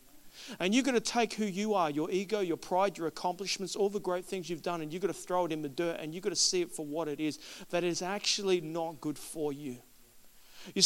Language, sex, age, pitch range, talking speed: English, male, 40-59, 160-215 Hz, 260 wpm